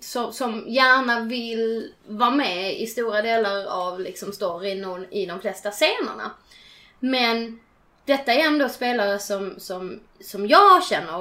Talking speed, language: 135 wpm, Swedish